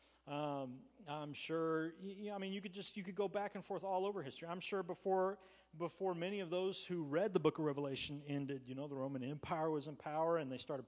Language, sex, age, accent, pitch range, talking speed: English, male, 40-59, American, 135-170 Hz, 250 wpm